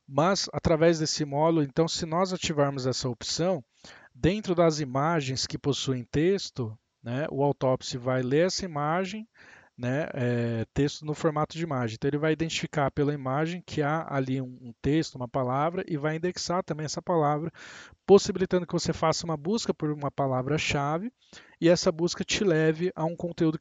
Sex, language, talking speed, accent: male, Portuguese, 170 wpm, Brazilian